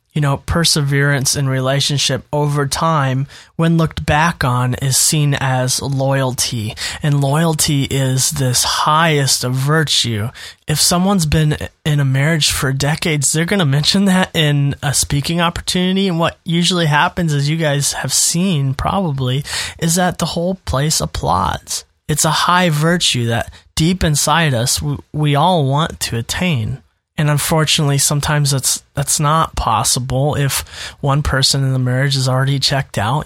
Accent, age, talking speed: American, 20-39, 155 wpm